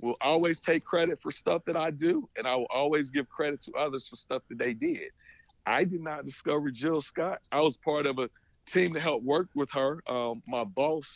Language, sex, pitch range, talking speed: English, male, 130-150 Hz, 225 wpm